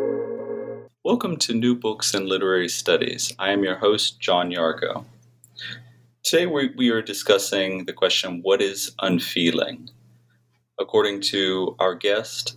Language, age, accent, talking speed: English, 30-49, American, 130 wpm